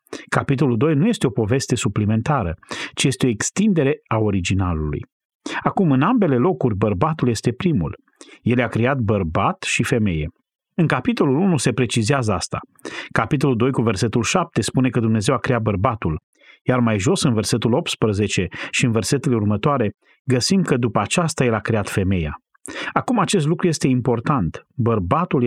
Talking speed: 160 wpm